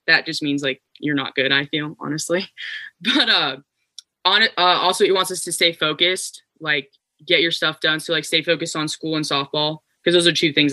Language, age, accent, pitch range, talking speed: English, 10-29, American, 145-175 Hz, 220 wpm